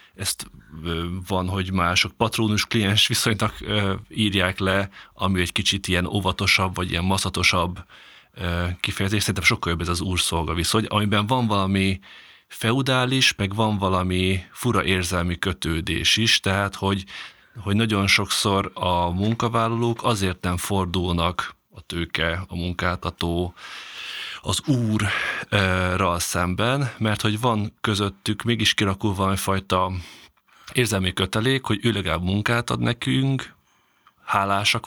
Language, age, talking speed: Hungarian, 30-49, 115 wpm